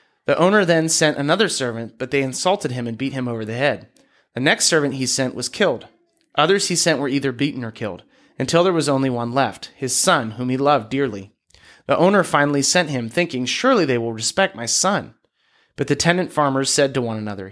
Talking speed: 215 wpm